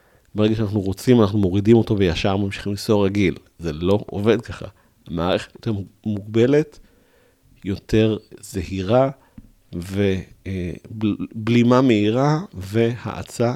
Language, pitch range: Hebrew, 95-115 Hz